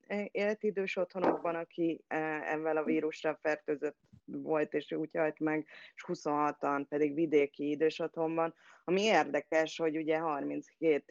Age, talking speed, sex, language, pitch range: 20-39, 135 wpm, female, Hungarian, 145-160 Hz